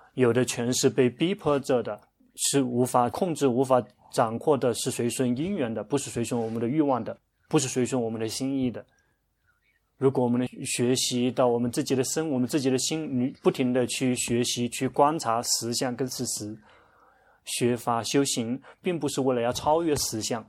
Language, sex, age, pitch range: Chinese, male, 30-49, 120-140 Hz